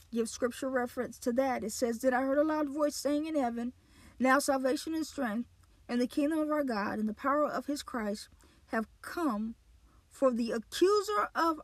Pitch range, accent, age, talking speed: 220-275 Hz, American, 40-59, 195 wpm